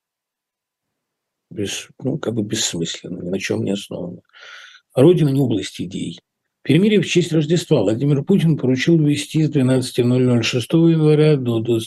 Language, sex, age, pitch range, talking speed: Russian, male, 50-69, 110-155 Hz, 125 wpm